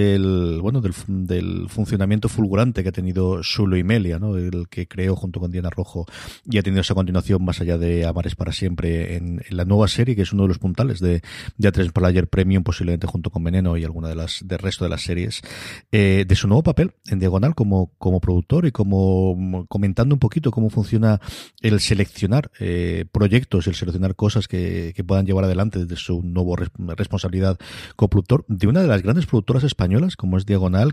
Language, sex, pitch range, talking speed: Spanish, male, 90-105 Hz, 205 wpm